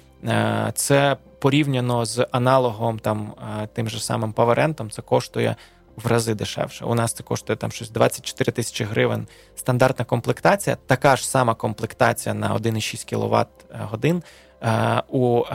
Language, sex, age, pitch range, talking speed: Ukrainian, male, 20-39, 115-130 Hz, 130 wpm